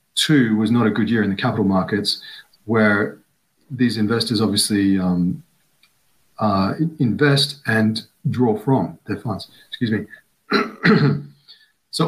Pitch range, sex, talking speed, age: 110-145 Hz, male, 125 wpm, 40-59